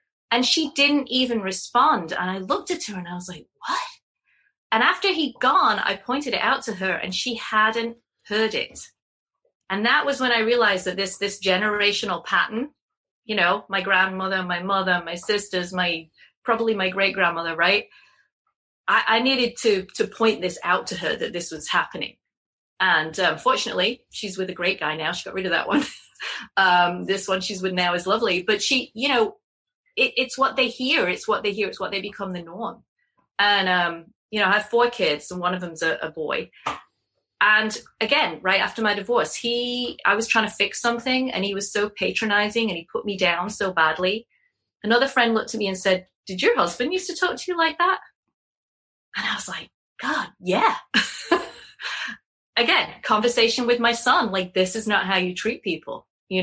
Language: English